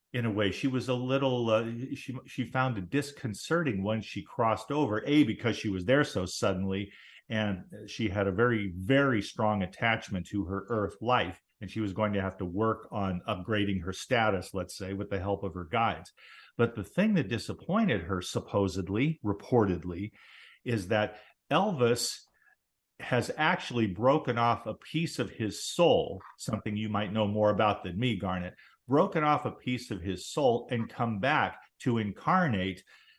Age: 50-69